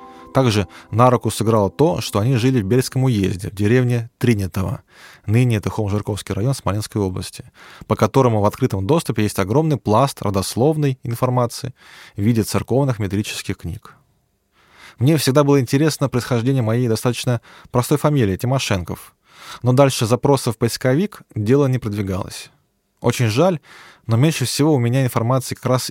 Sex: male